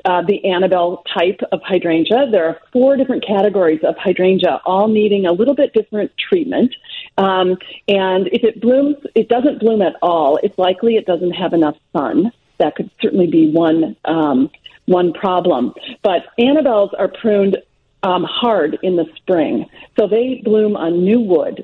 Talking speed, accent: 165 wpm, American